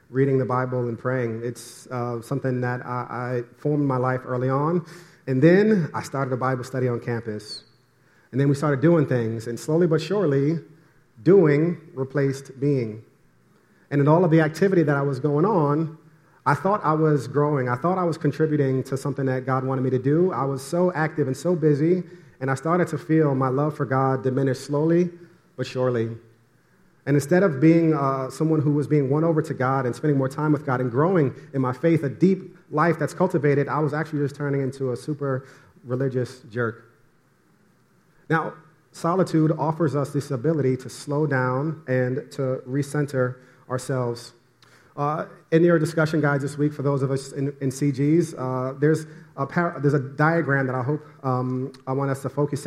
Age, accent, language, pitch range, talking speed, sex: 30-49, American, English, 130-155 Hz, 190 wpm, male